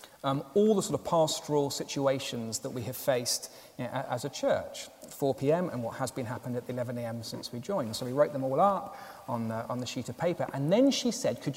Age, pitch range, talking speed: 30-49, 140-195 Hz, 220 wpm